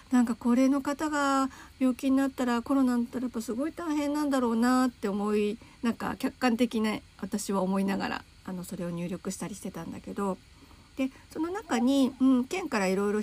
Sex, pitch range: female, 205-275 Hz